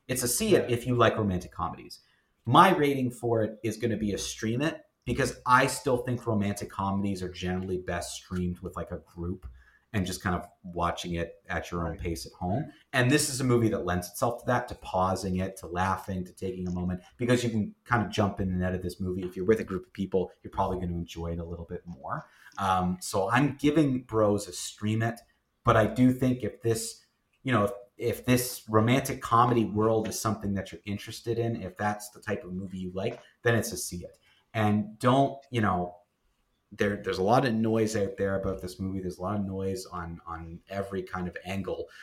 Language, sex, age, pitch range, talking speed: English, male, 30-49, 90-120 Hz, 230 wpm